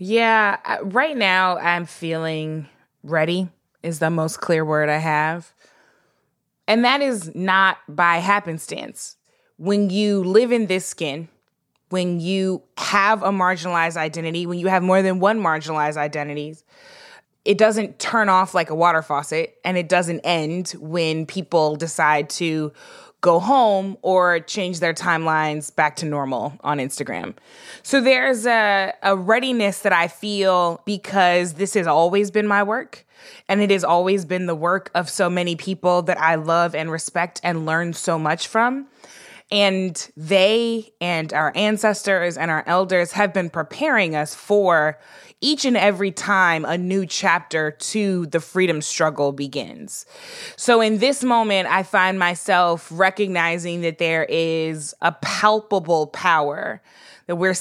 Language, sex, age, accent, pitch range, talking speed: English, female, 20-39, American, 165-200 Hz, 150 wpm